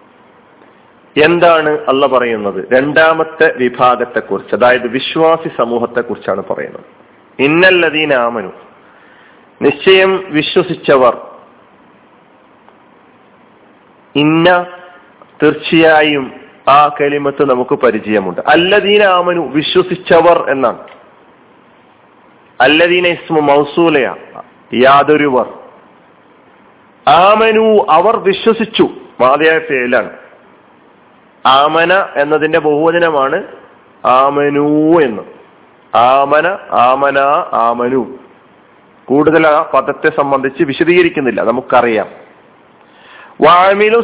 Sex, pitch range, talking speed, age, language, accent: male, 140-185 Hz, 65 wpm, 40-59, Malayalam, native